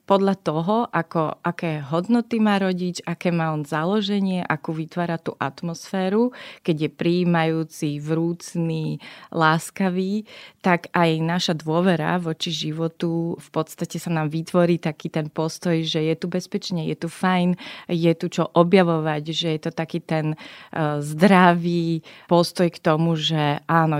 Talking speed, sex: 140 wpm, female